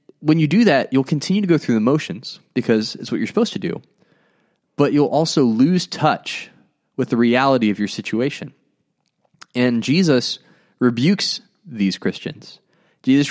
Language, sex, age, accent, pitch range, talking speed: English, male, 20-39, American, 120-165 Hz, 160 wpm